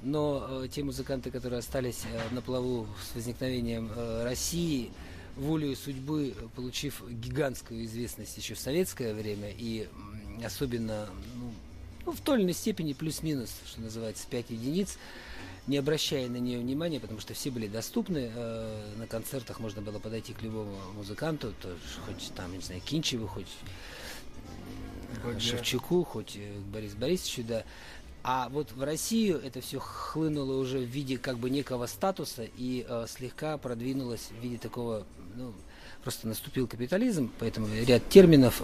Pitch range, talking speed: 105-135 Hz, 150 wpm